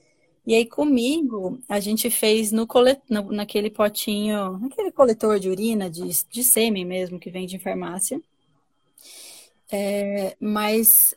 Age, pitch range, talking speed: 10-29, 200-230 Hz, 135 wpm